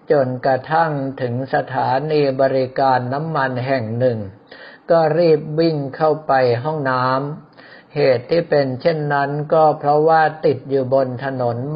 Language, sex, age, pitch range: Thai, male, 60-79, 125-150 Hz